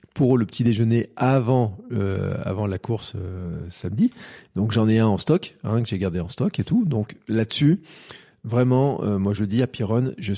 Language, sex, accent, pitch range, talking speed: French, male, French, 100-125 Hz, 200 wpm